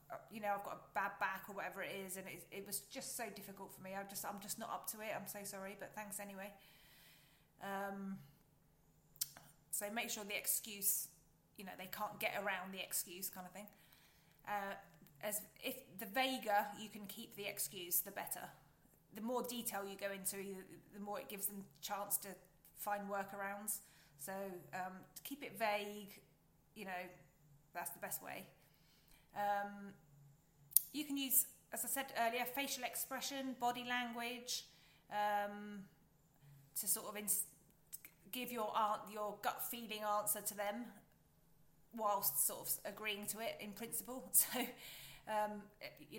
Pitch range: 185-215 Hz